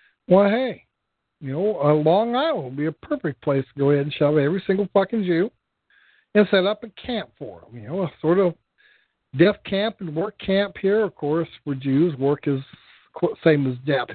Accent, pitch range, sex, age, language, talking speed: American, 155-205 Hz, male, 60-79, English, 210 wpm